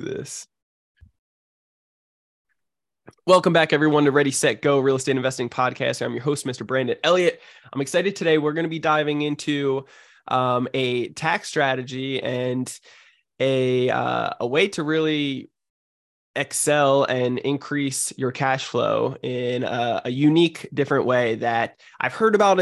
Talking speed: 140 wpm